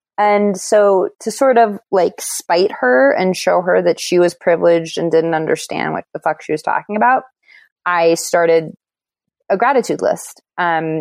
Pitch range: 160-205 Hz